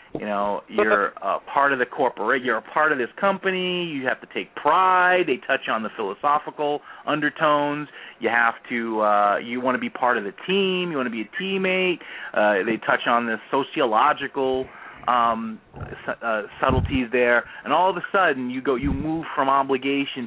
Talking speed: 195 wpm